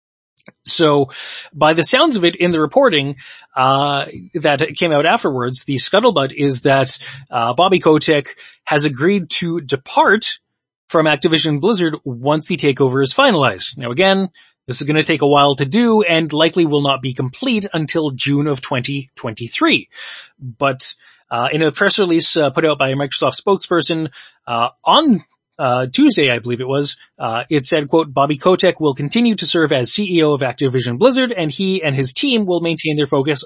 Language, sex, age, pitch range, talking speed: English, male, 30-49, 140-175 Hz, 180 wpm